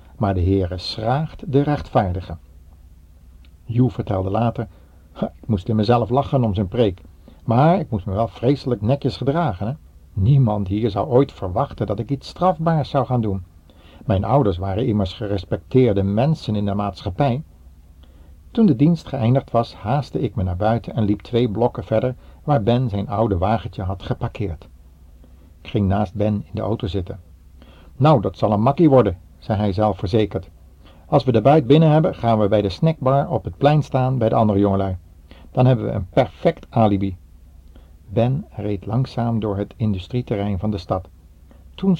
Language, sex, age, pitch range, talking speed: Dutch, male, 60-79, 90-125 Hz, 175 wpm